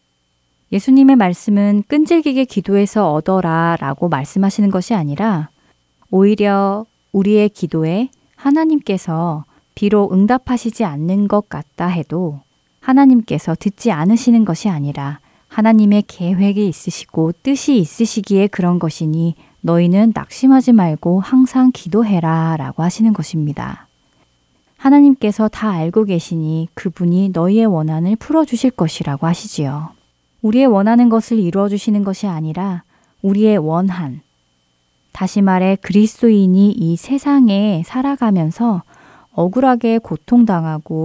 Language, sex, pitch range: Korean, female, 160-225 Hz